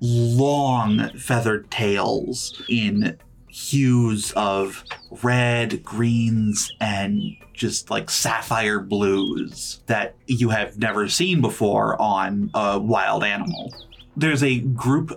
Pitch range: 110-135 Hz